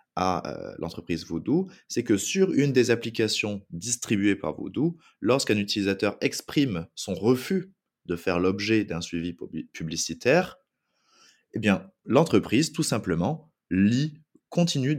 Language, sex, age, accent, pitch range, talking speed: French, male, 20-39, French, 90-120 Hz, 120 wpm